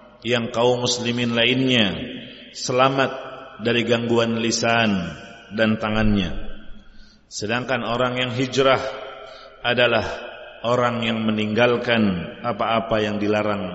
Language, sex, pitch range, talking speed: Indonesian, male, 110-130 Hz, 90 wpm